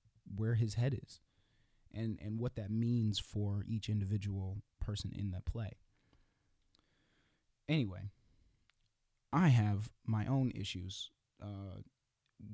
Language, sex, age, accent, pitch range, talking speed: English, male, 20-39, American, 100-115 Hz, 110 wpm